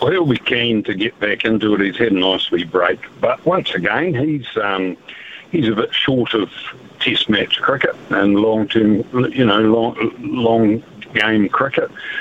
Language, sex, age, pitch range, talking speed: English, male, 60-79, 105-130 Hz, 180 wpm